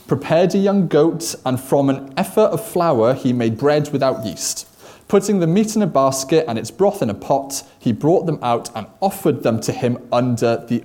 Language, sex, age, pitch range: English, male, 30-49, 120-185 Hz